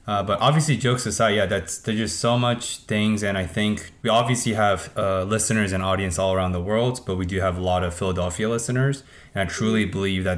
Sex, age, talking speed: male, 20-39, 230 wpm